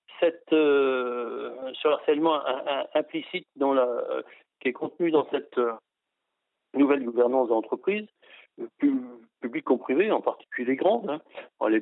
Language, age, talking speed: French, 60-79, 150 wpm